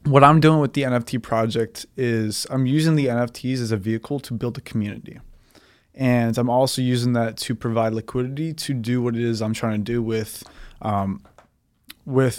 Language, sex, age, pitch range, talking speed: English, male, 20-39, 110-125 Hz, 190 wpm